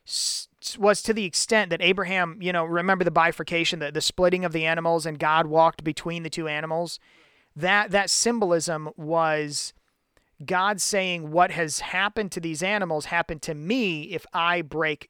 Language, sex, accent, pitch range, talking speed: English, male, American, 160-200 Hz, 165 wpm